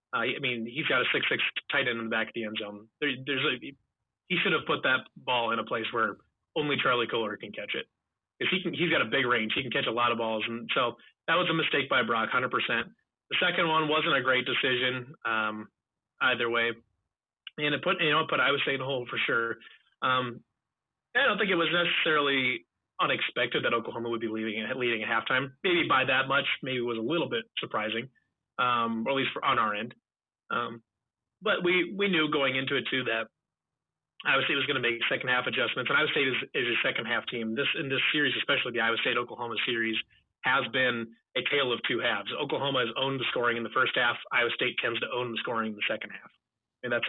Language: English